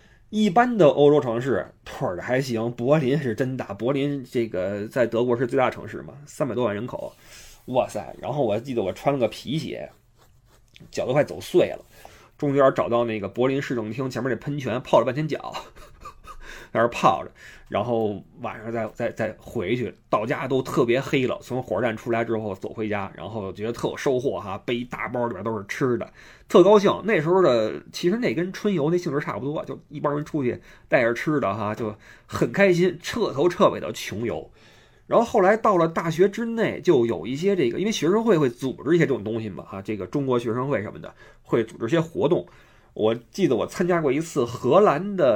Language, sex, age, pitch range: Chinese, male, 20-39, 115-175 Hz